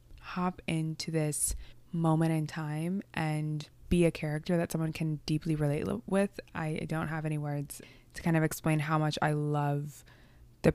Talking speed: 165 wpm